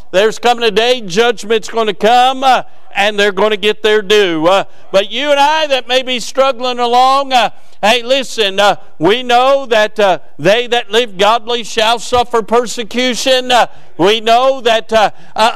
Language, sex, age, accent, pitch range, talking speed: English, male, 50-69, American, 205-255 Hz, 175 wpm